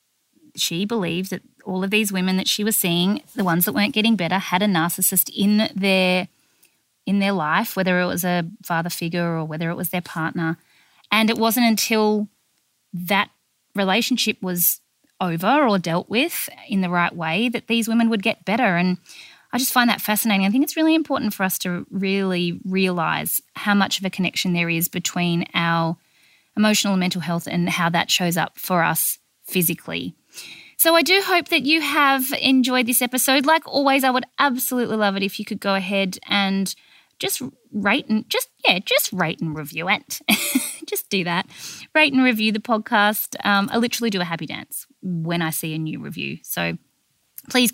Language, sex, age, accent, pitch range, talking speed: English, female, 20-39, Australian, 180-230 Hz, 190 wpm